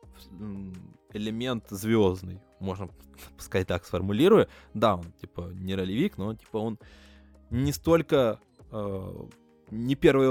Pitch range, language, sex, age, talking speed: 95-120 Hz, Russian, male, 20-39, 110 wpm